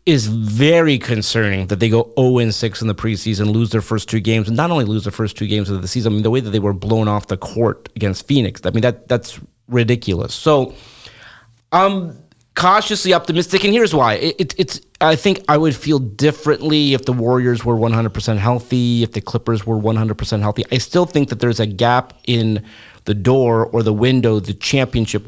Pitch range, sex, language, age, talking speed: 110-140 Hz, male, English, 30-49, 210 wpm